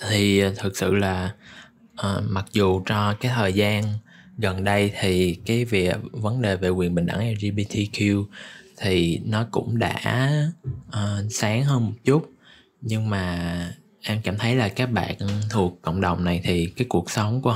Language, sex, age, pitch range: Vietnamese, male, 20-39, 90-120 Hz